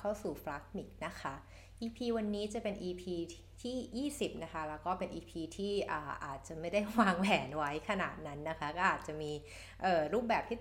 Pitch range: 155-195 Hz